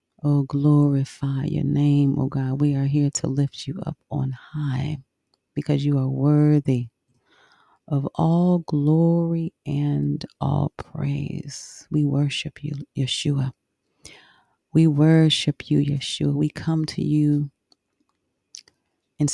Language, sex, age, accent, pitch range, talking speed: English, female, 40-59, American, 140-150 Hz, 120 wpm